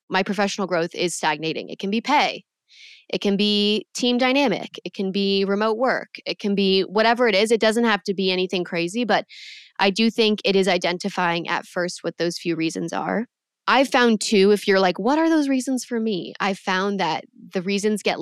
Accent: American